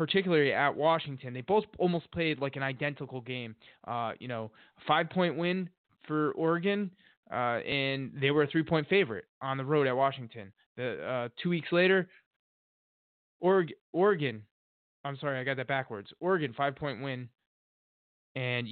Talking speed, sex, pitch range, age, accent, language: 155 wpm, male, 130-160 Hz, 20-39, American, English